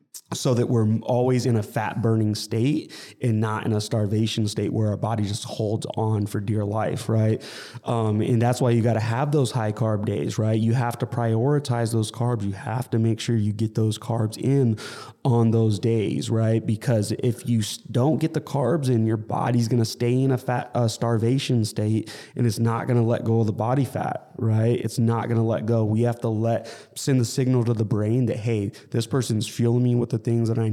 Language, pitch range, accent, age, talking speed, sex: English, 110-125 Hz, American, 20-39, 230 wpm, male